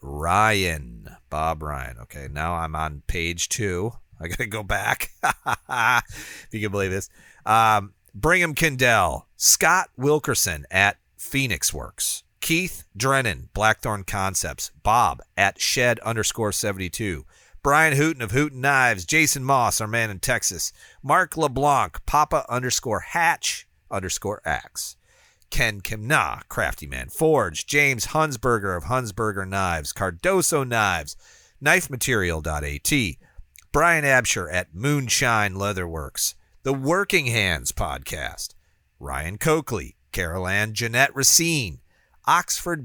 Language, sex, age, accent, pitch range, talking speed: English, male, 40-59, American, 90-135 Hz, 115 wpm